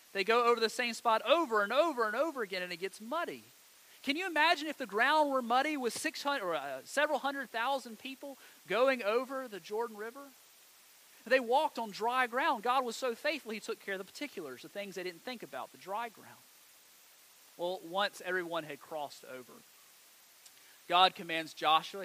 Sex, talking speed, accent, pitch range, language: male, 190 wpm, American, 185-265 Hz, English